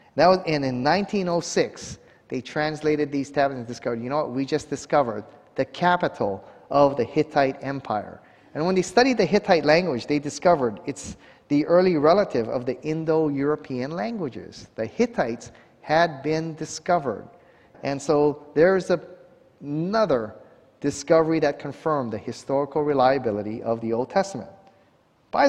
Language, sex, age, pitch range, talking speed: English, male, 30-49, 130-170 Hz, 135 wpm